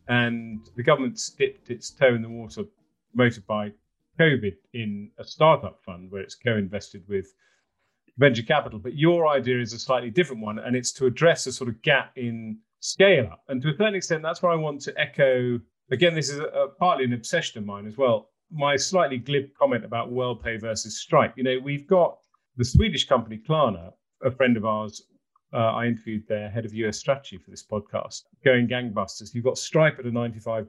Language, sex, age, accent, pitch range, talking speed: English, male, 40-59, British, 110-145 Hz, 205 wpm